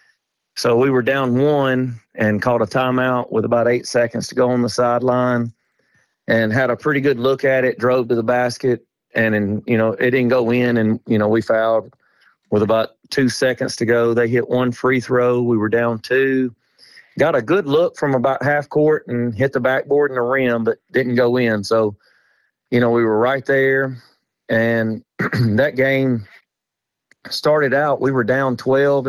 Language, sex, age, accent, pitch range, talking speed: English, male, 40-59, American, 115-130 Hz, 190 wpm